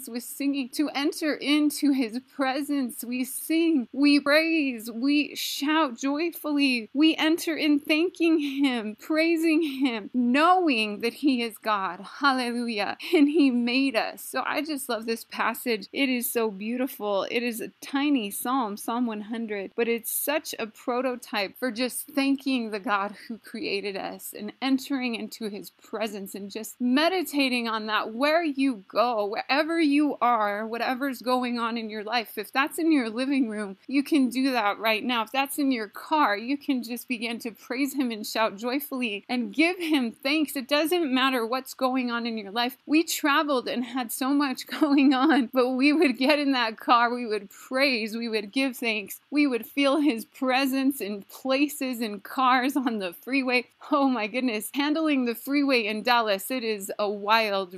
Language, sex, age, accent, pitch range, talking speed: English, female, 30-49, American, 230-285 Hz, 175 wpm